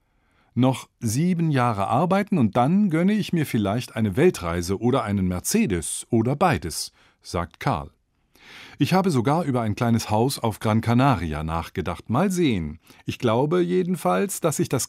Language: German